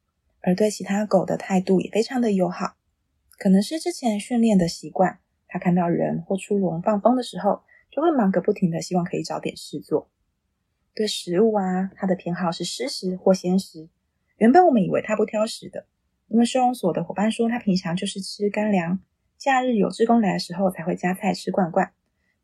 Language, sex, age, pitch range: Chinese, female, 20-39, 180-220 Hz